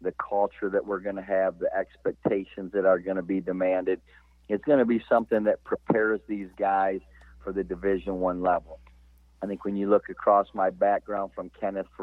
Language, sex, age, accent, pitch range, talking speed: English, male, 40-59, American, 95-105 Hz, 195 wpm